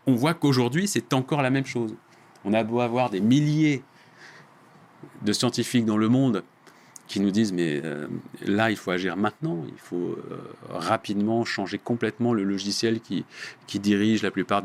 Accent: French